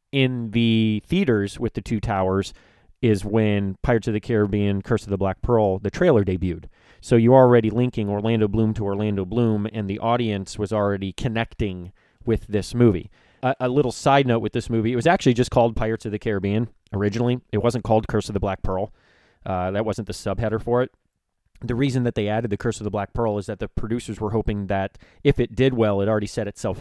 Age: 30-49